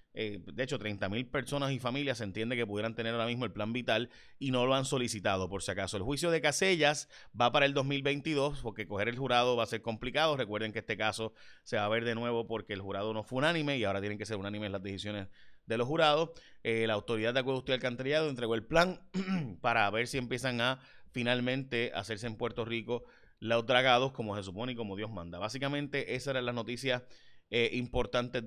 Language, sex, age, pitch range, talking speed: Spanish, male, 30-49, 105-130 Hz, 220 wpm